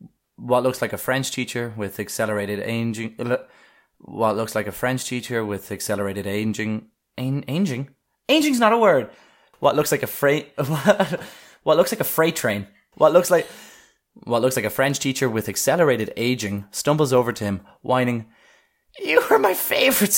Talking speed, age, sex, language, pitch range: 165 wpm, 20-39, male, English, 105-145 Hz